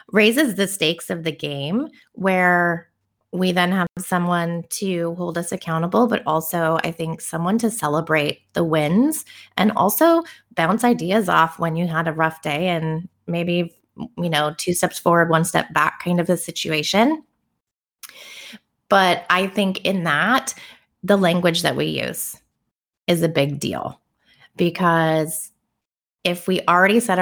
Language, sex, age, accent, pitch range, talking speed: English, female, 20-39, American, 160-195 Hz, 150 wpm